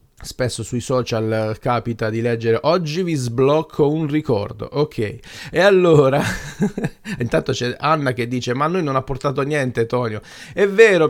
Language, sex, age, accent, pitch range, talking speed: Italian, male, 30-49, native, 120-155 Hz, 155 wpm